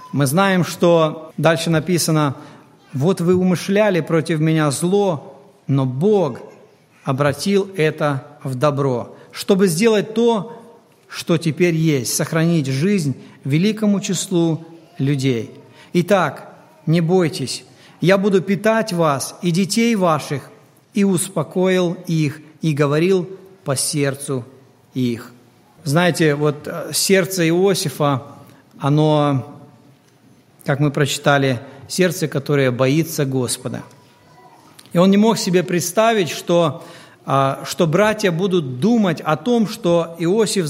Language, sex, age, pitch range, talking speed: Russian, male, 50-69, 145-190 Hz, 110 wpm